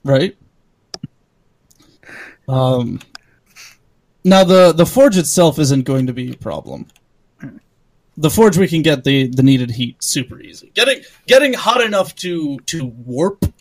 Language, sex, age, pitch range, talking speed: English, male, 30-49, 130-160 Hz, 135 wpm